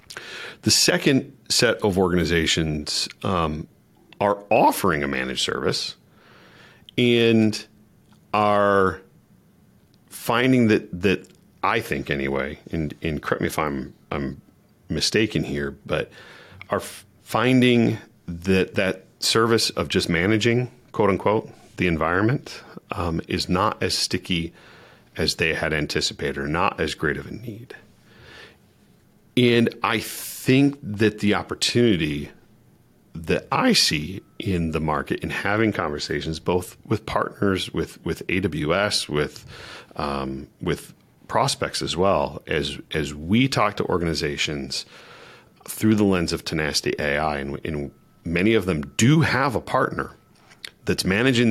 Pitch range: 75-110 Hz